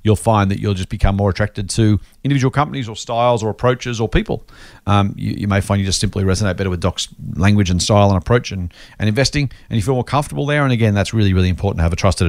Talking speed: 260 wpm